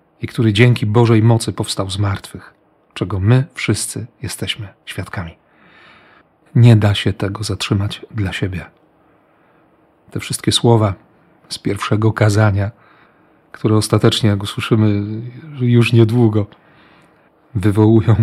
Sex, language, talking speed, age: male, Polish, 110 wpm, 40-59